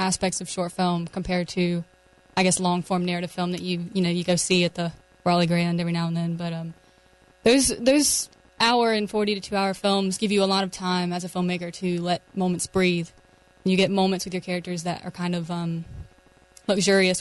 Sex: female